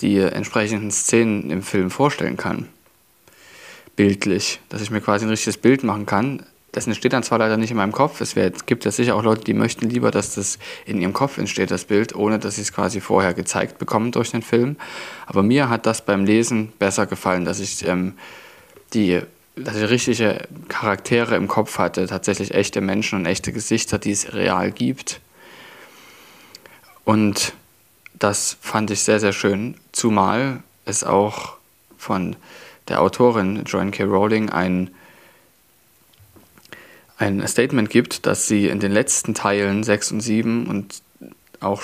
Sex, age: male, 20-39